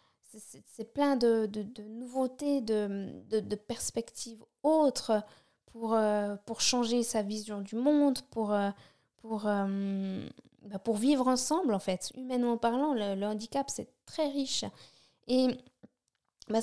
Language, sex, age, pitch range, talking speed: French, female, 20-39, 215-255 Hz, 135 wpm